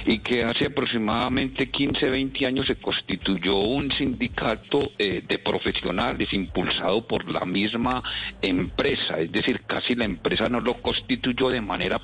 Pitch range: 95-130 Hz